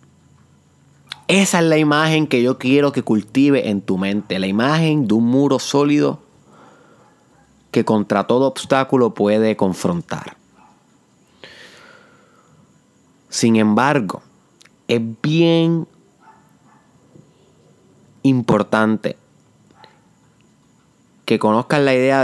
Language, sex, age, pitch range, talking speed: Spanish, male, 30-49, 115-150 Hz, 90 wpm